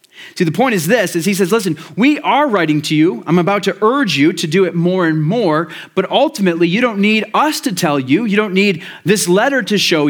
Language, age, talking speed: English, 30-49, 245 wpm